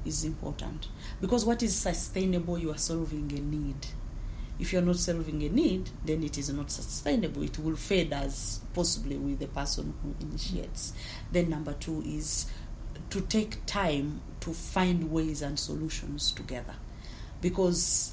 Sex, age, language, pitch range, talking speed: female, 40-59, English, 135-175 Hz, 155 wpm